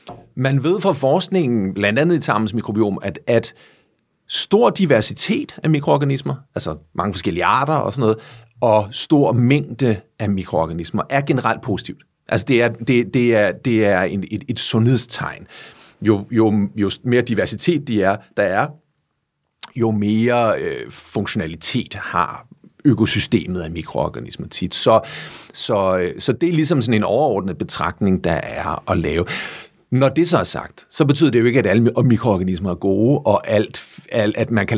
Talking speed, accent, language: 160 wpm, native, Danish